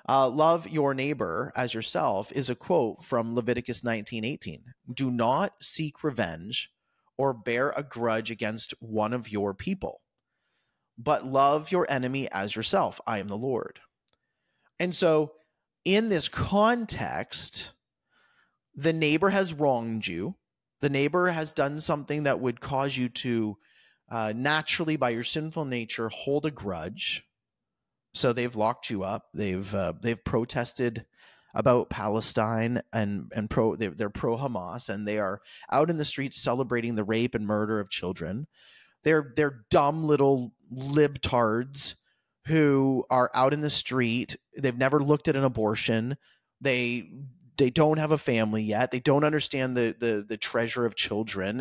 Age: 30-49